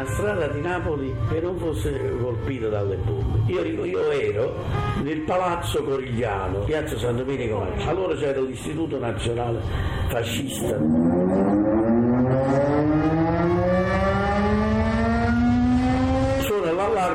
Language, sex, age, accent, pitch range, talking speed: Italian, male, 50-69, native, 105-145 Hz, 85 wpm